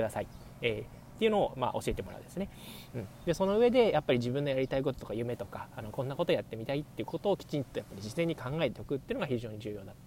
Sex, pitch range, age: male, 115-170 Hz, 20-39